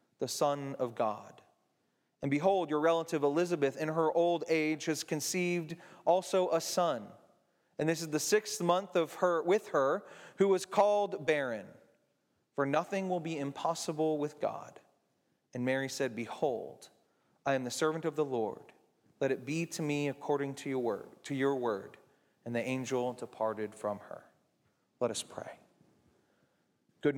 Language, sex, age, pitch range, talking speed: English, male, 30-49, 140-165 Hz, 160 wpm